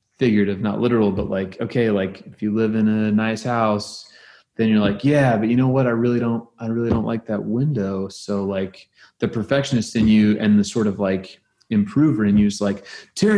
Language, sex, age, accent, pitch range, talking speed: English, male, 30-49, American, 100-120 Hz, 215 wpm